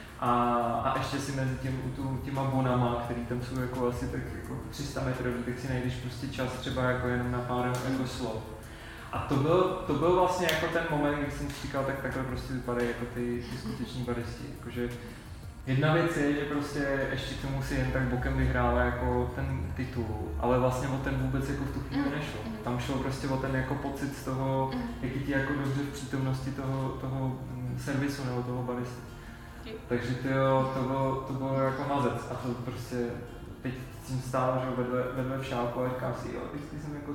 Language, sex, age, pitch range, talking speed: Czech, male, 20-39, 125-135 Hz, 195 wpm